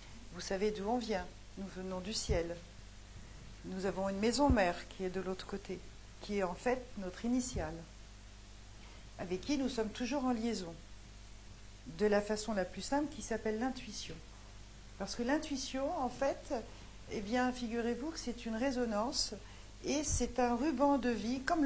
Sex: female